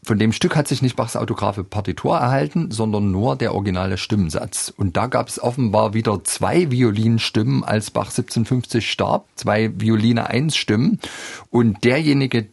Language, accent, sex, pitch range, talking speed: German, German, male, 95-115 Hz, 160 wpm